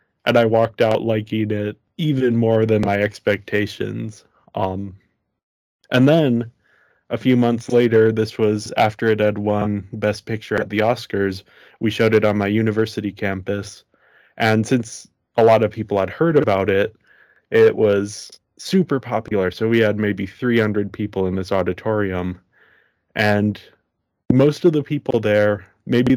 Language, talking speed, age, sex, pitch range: English, 150 wpm, 20-39, male, 100-115 Hz